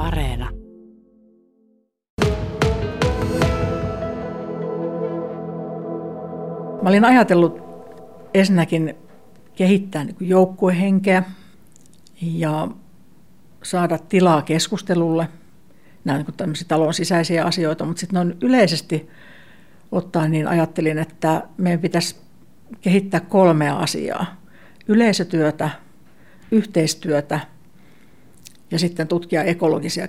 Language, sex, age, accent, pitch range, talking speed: Finnish, female, 60-79, native, 160-190 Hz, 70 wpm